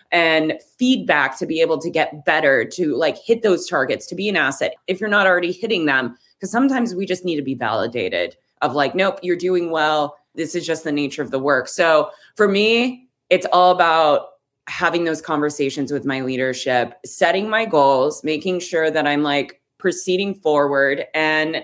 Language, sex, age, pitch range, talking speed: English, female, 20-39, 145-185 Hz, 190 wpm